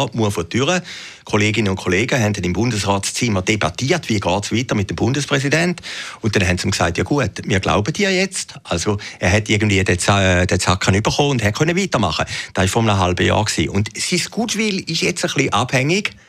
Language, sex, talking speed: German, male, 190 wpm